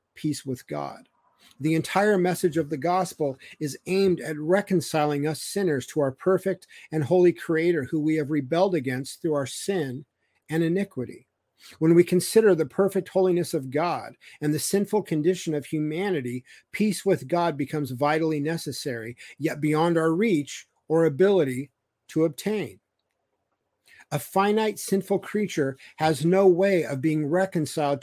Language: English